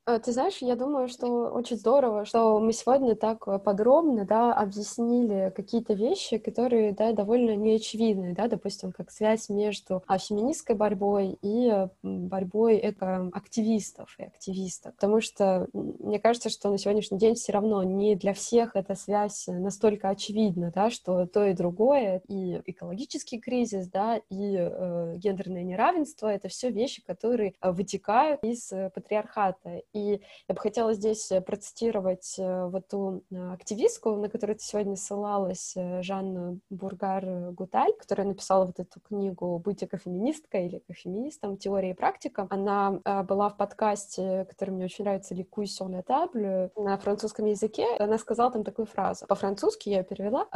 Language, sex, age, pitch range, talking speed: Russian, female, 20-39, 190-225 Hz, 140 wpm